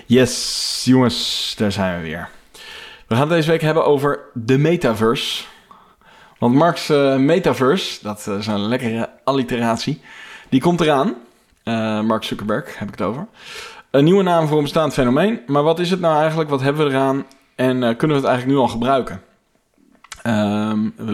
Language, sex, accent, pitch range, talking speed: Dutch, male, Dutch, 115-150 Hz, 175 wpm